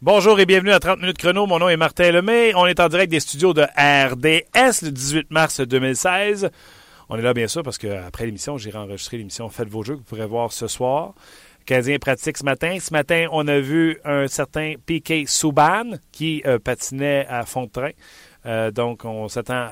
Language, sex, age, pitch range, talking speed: French, male, 40-59, 115-145 Hz, 210 wpm